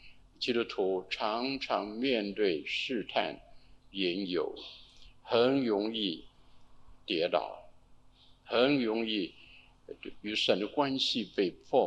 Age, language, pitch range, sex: 50-69, Chinese, 90-140 Hz, male